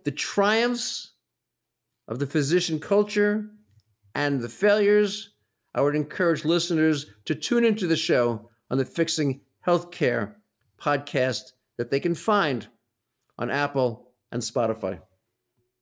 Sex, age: male, 50-69